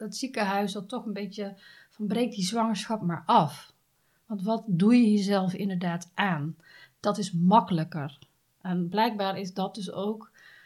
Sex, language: female, Dutch